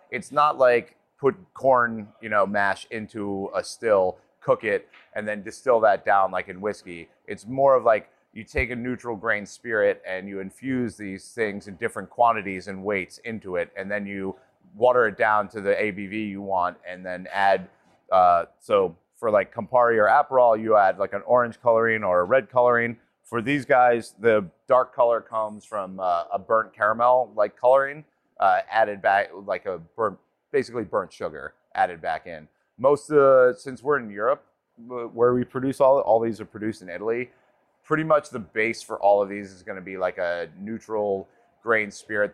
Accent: American